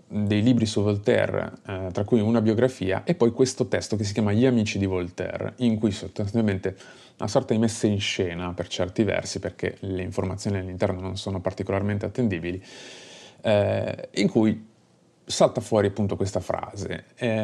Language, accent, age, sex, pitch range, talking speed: Italian, native, 30-49, male, 95-120 Hz, 170 wpm